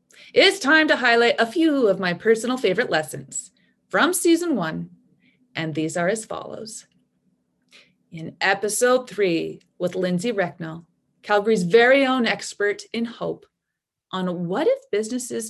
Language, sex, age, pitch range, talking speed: English, female, 30-49, 175-250 Hz, 135 wpm